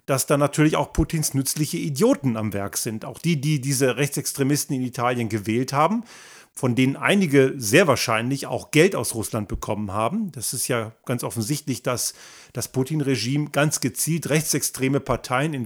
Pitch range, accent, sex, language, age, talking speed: 125-155 Hz, German, male, German, 40-59, 165 wpm